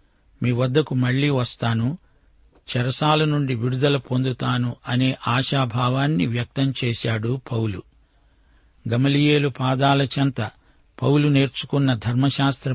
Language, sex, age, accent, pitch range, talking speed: Telugu, male, 60-79, native, 115-140 Hz, 90 wpm